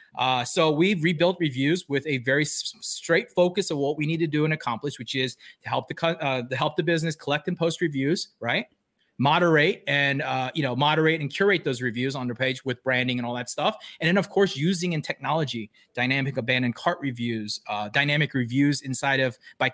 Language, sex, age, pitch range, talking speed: English, male, 30-49, 130-175 Hz, 215 wpm